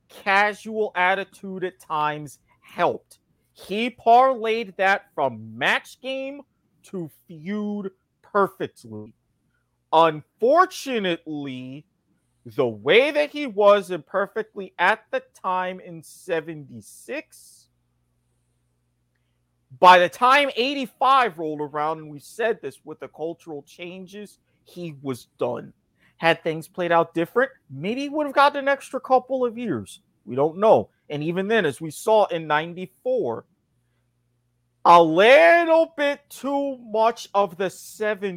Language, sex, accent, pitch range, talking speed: English, male, American, 145-220 Hz, 120 wpm